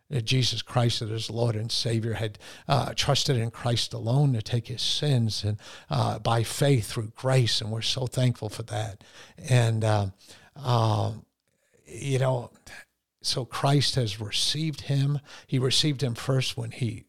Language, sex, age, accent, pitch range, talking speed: English, male, 50-69, American, 115-135 Hz, 160 wpm